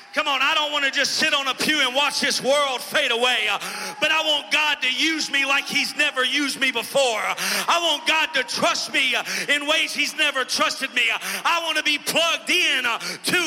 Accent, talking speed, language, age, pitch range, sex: American, 220 wpm, English, 40-59, 210-290 Hz, male